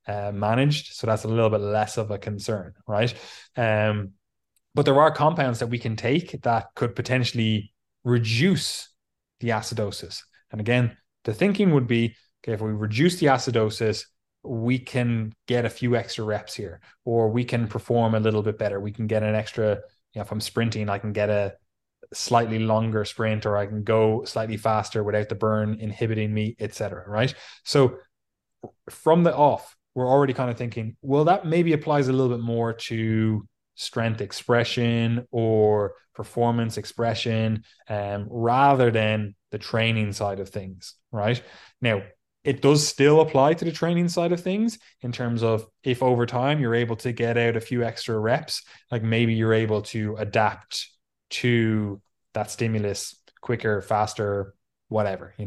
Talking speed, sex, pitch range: 170 wpm, male, 105-125 Hz